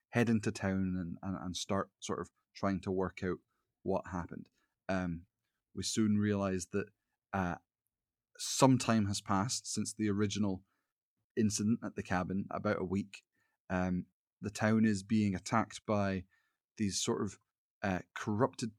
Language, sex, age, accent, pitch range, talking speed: English, male, 30-49, British, 95-110 Hz, 150 wpm